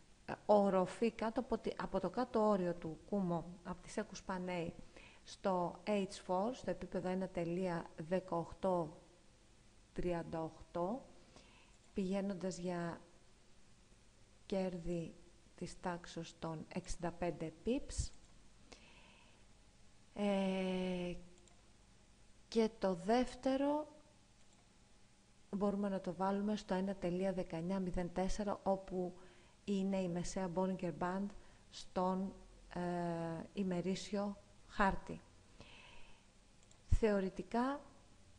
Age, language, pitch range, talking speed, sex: 40-59, Greek, 160-195 Hz, 65 wpm, female